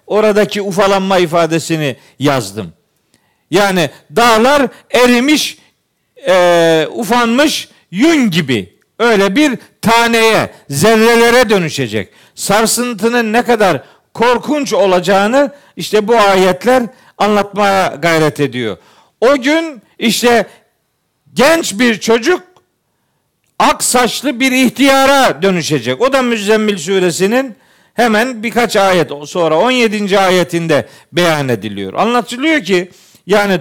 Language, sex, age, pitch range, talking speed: Turkish, male, 50-69, 185-245 Hz, 95 wpm